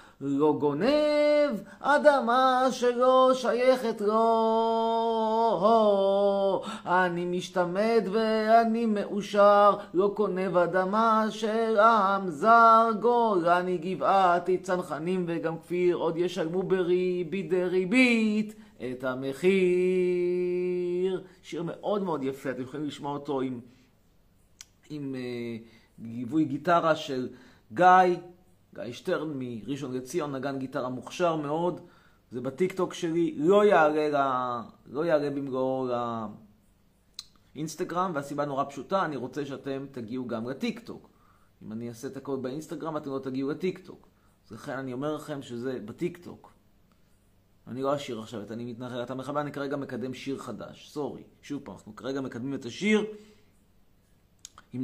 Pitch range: 125-195 Hz